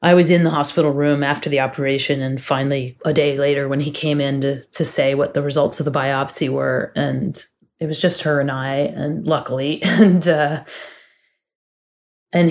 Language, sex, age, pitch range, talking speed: English, female, 30-49, 145-170 Hz, 190 wpm